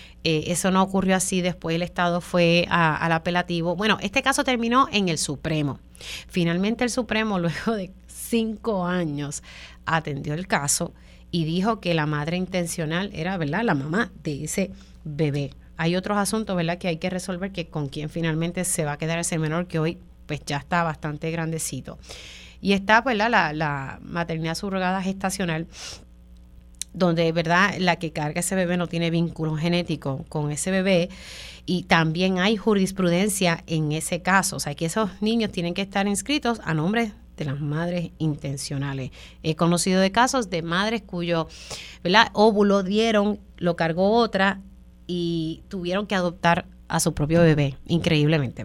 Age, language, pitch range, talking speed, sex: 30-49, Spanish, 160-195 Hz, 165 wpm, female